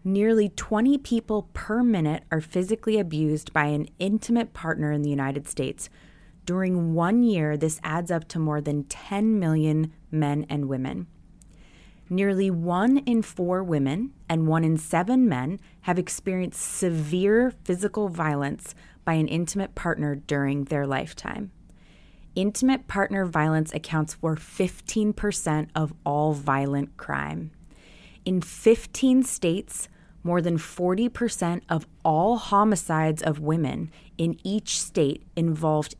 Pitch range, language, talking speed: 155-200 Hz, English, 130 wpm